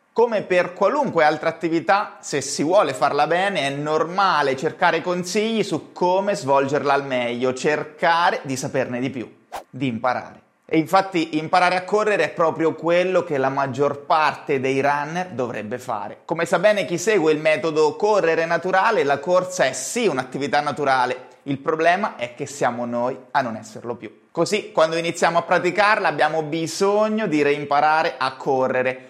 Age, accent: 30-49, native